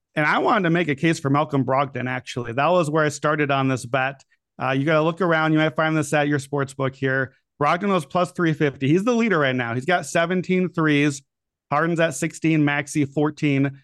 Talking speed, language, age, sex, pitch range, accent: 225 wpm, English, 40-59, male, 140-180 Hz, American